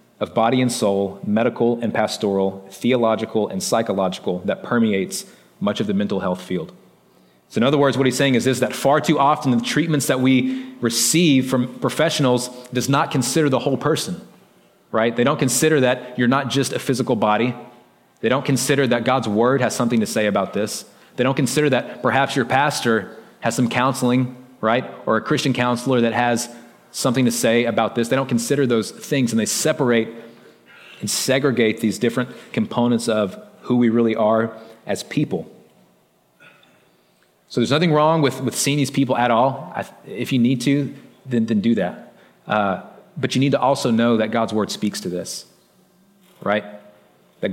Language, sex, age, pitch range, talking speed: English, male, 30-49, 110-135 Hz, 180 wpm